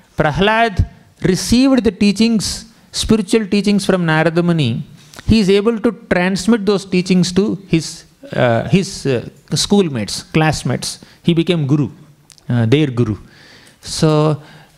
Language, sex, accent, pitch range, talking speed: English, male, Indian, 150-190 Hz, 120 wpm